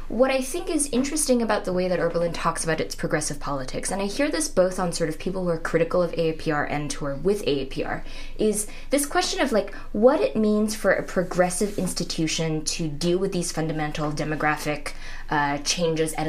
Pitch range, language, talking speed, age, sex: 160-210 Hz, English, 205 wpm, 20-39, female